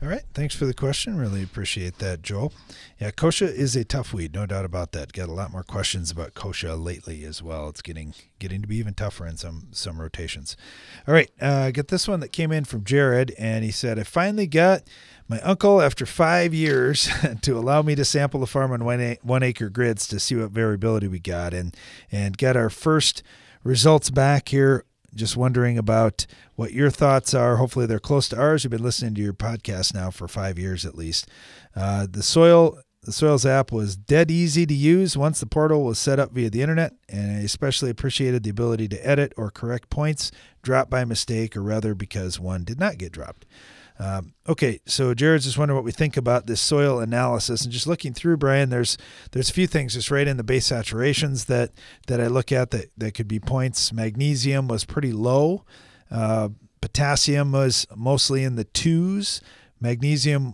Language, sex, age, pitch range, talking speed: English, male, 40-59, 105-140 Hz, 200 wpm